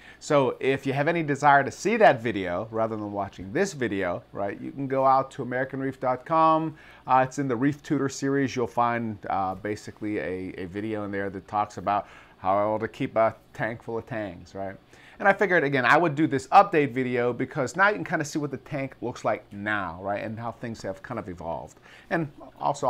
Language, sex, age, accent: English, male, 40-59, American